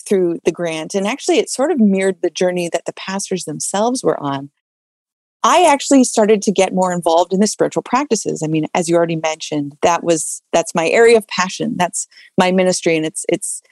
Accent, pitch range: American, 175-235 Hz